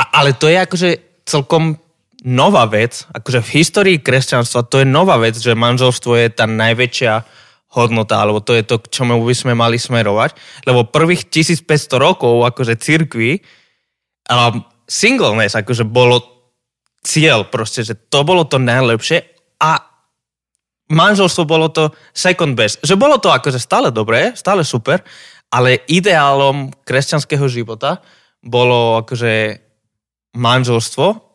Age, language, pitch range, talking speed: 20-39, Slovak, 120-150 Hz, 135 wpm